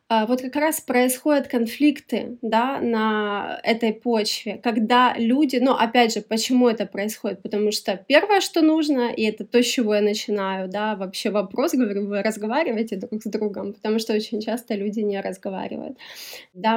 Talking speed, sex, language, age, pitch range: 165 wpm, female, Ukrainian, 20-39, 210-250 Hz